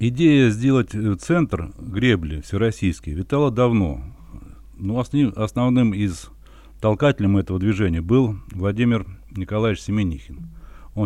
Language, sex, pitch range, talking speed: Russian, male, 85-115 Hz, 100 wpm